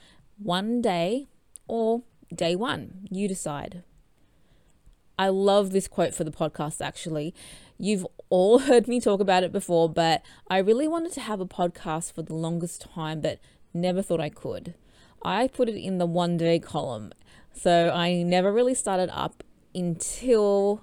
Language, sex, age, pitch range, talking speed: English, female, 20-39, 165-225 Hz, 160 wpm